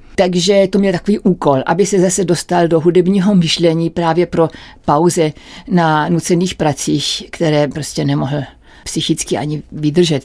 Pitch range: 165-210 Hz